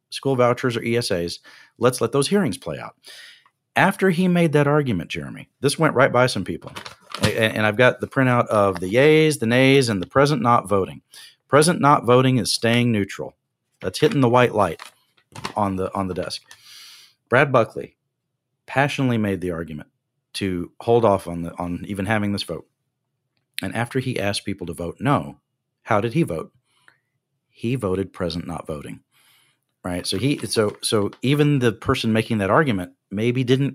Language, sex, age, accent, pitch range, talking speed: English, male, 40-59, American, 105-135 Hz, 180 wpm